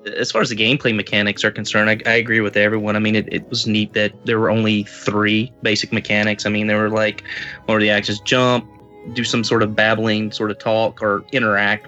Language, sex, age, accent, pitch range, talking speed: English, male, 20-39, American, 105-115 Hz, 230 wpm